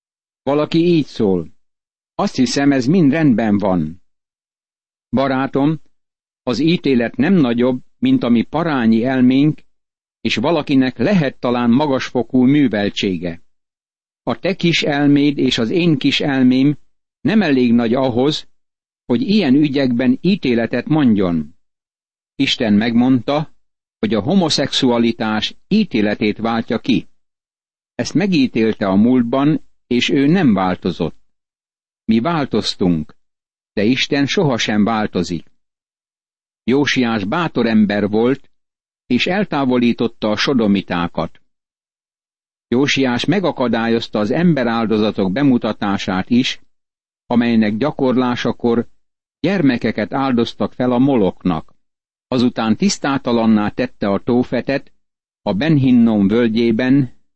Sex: male